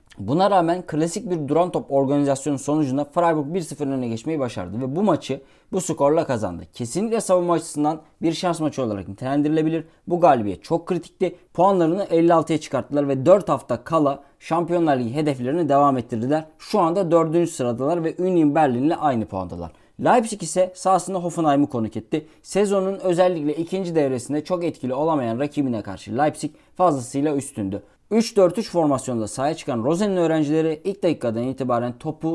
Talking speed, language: 150 wpm, Turkish